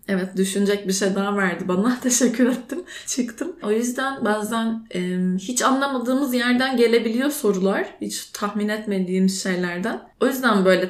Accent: native